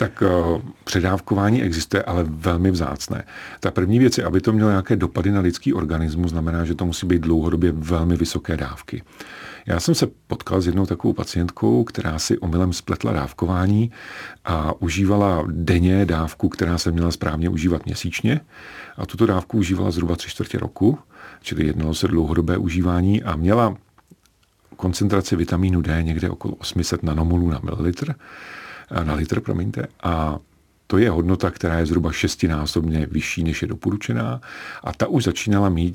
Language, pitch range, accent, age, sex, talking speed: Czech, 80-95 Hz, native, 40-59, male, 155 wpm